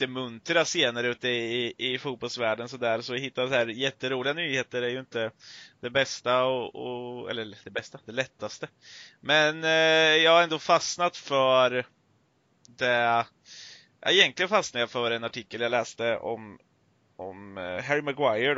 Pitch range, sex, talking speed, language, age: 110-130 Hz, male, 165 wpm, Swedish, 20-39